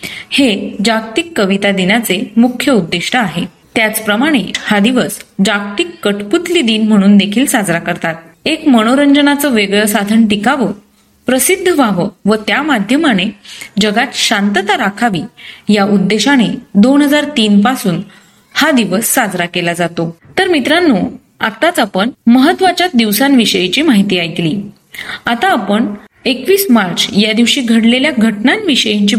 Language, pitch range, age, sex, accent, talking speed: Marathi, 200-260 Hz, 30-49, female, native, 110 wpm